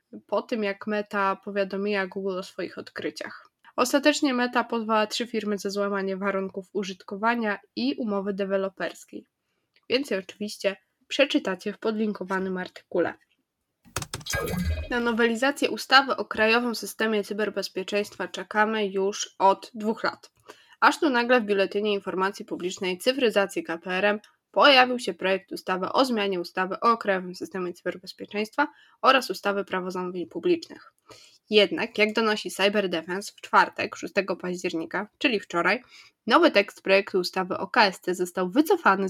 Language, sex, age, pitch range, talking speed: Polish, female, 20-39, 190-235 Hz, 125 wpm